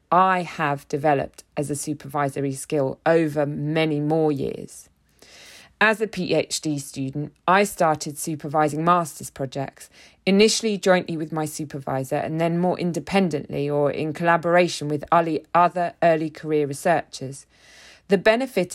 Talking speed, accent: 125 wpm, British